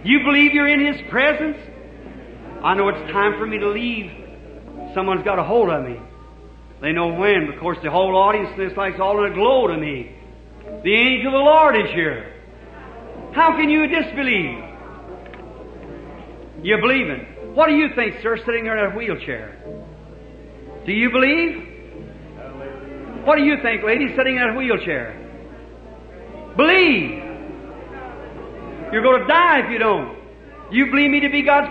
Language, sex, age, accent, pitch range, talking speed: English, male, 50-69, American, 205-275 Hz, 160 wpm